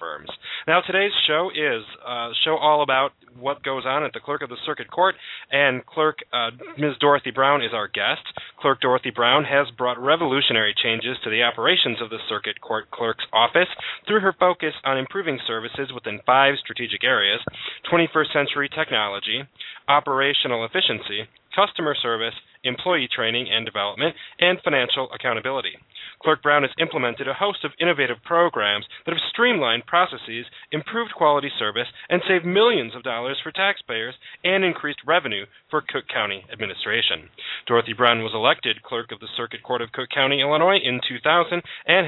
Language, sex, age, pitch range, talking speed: English, male, 30-49, 120-170 Hz, 160 wpm